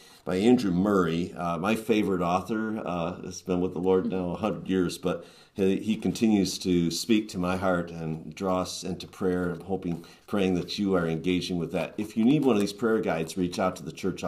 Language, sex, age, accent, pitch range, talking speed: English, male, 50-69, American, 90-110 Hz, 225 wpm